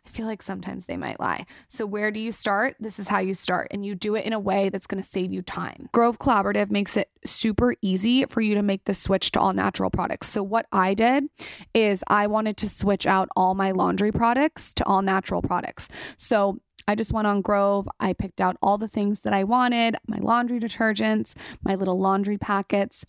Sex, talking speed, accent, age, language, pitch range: female, 225 wpm, American, 20-39, English, 195-230 Hz